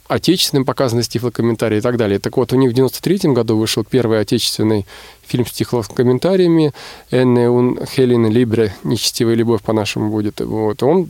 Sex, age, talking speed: male, 20-39, 160 wpm